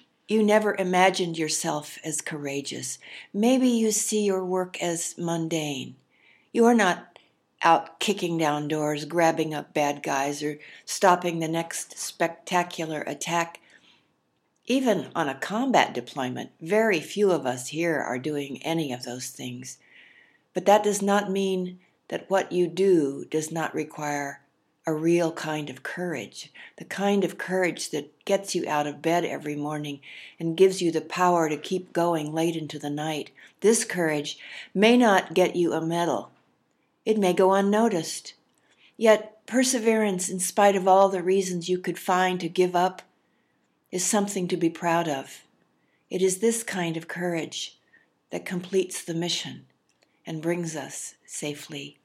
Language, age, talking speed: English, 60-79, 155 wpm